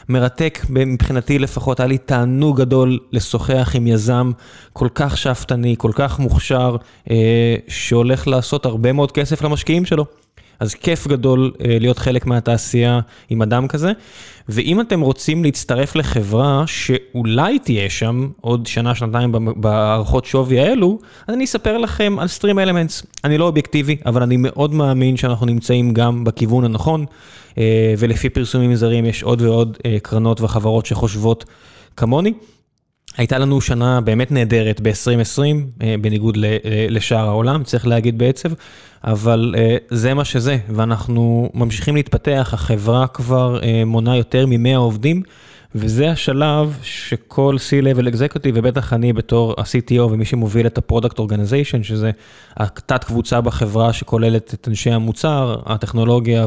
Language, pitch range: Hebrew, 115-140 Hz